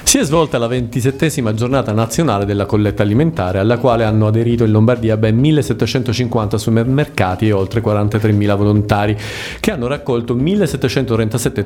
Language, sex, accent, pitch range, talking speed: Italian, male, native, 105-125 Hz, 140 wpm